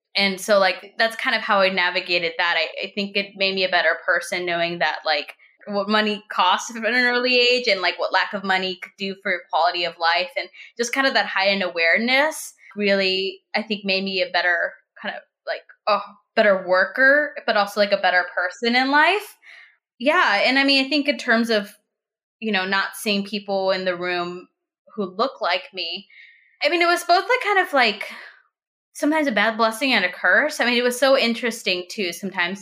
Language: English